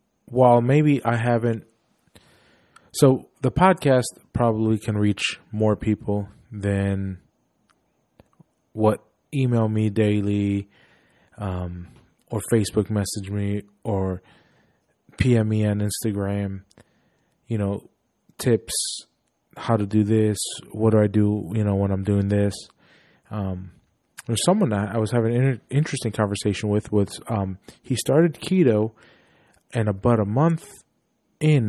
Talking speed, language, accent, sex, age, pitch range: 125 wpm, English, American, male, 20-39, 100-120 Hz